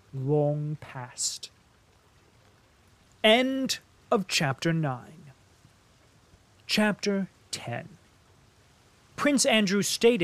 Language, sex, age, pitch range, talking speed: English, male, 30-49, 130-200 Hz, 65 wpm